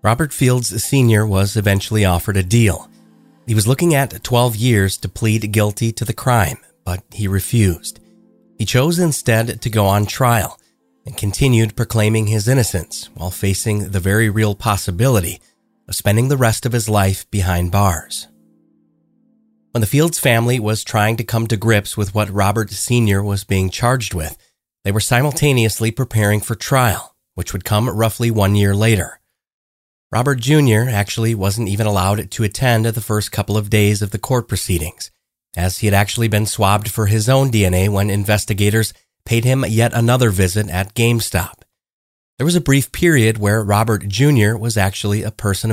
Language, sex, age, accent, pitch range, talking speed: English, male, 30-49, American, 100-115 Hz, 170 wpm